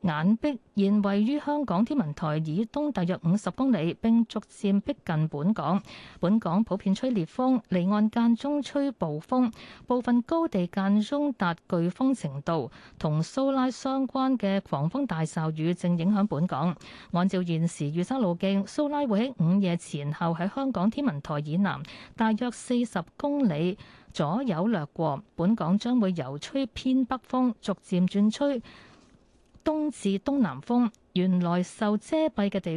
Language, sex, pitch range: Chinese, female, 170-245 Hz